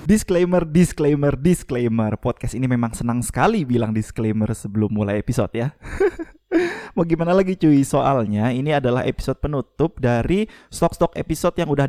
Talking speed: 140 wpm